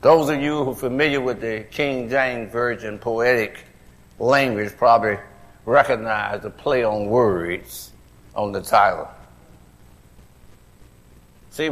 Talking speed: 120 wpm